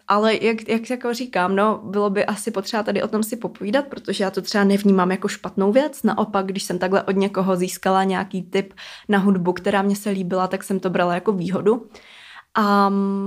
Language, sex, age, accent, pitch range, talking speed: Czech, female, 20-39, native, 185-215 Hz, 205 wpm